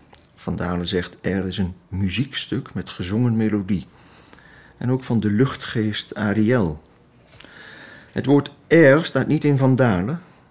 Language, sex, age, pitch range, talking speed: Dutch, male, 50-69, 95-115 Hz, 135 wpm